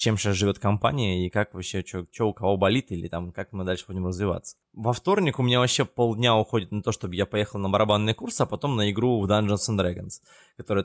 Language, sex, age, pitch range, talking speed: Russian, male, 20-39, 95-120 Hz, 230 wpm